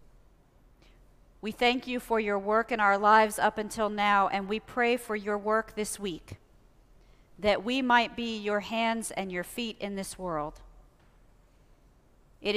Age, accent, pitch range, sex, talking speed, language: 50-69, American, 195-225 Hz, female, 160 wpm, English